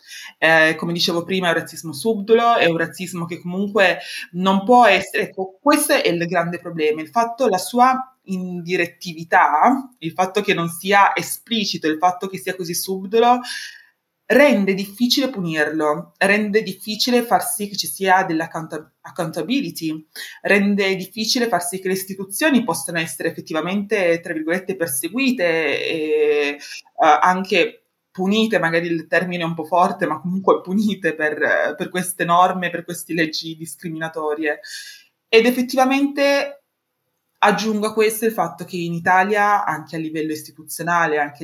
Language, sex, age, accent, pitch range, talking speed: Italian, female, 20-39, native, 160-205 Hz, 150 wpm